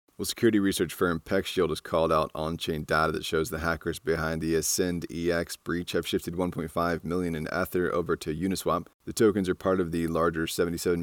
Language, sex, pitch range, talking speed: English, male, 80-90 Hz, 195 wpm